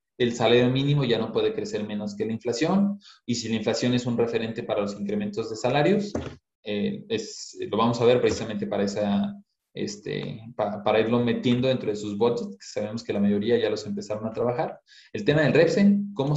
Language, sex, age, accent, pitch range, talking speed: Spanish, male, 20-39, Mexican, 110-140 Hz, 205 wpm